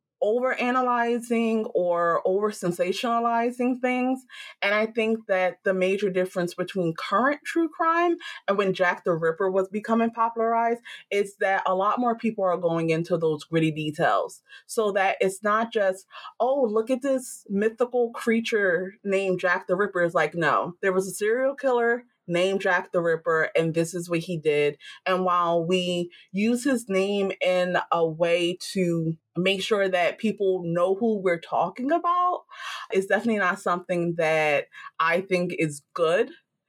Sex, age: female, 30-49